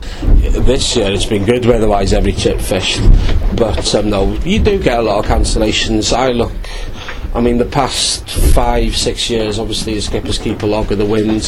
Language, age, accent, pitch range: English, 30-49, British, 105-130 Hz